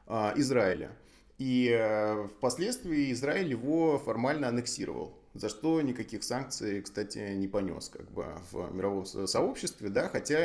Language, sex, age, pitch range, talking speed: Russian, male, 20-39, 105-135 Hz, 120 wpm